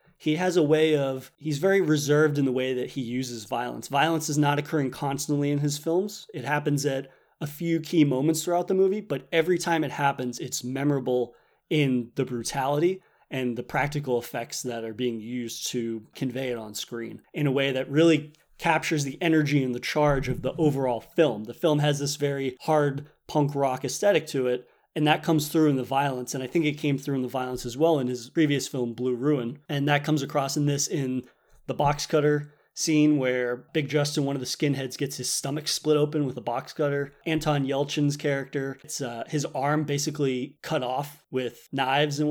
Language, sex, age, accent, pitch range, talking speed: English, male, 30-49, American, 130-155 Hz, 205 wpm